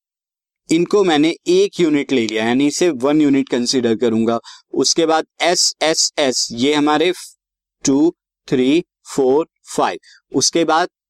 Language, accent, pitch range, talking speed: Hindi, native, 125-185 Hz, 130 wpm